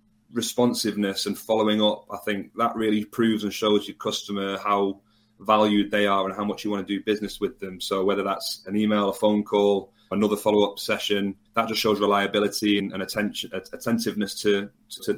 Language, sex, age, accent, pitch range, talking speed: English, male, 30-49, British, 100-110 Hz, 185 wpm